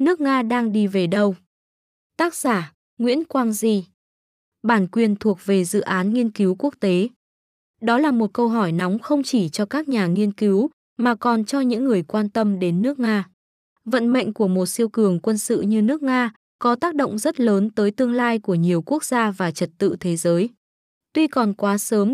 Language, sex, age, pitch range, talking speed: Vietnamese, female, 20-39, 195-245 Hz, 205 wpm